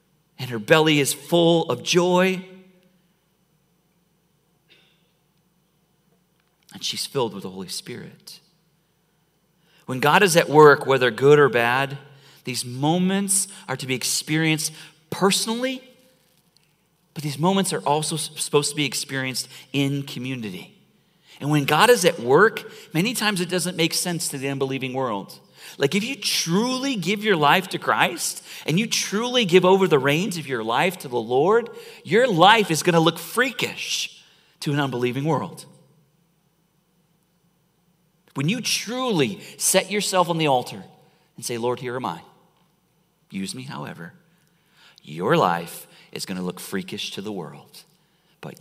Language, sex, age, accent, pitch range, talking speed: English, male, 40-59, American, 140-180 Hz, 145 wpm